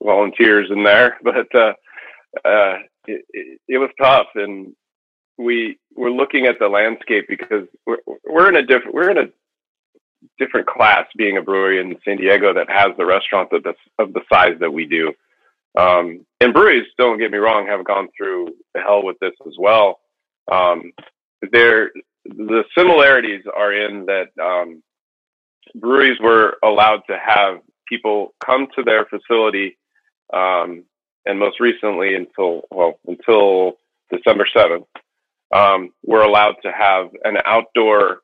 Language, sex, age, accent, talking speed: English, male, 40-59, American, 150 wpm